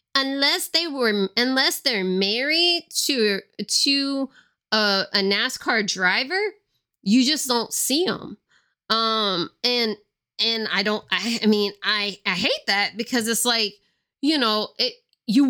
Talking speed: 140 wpm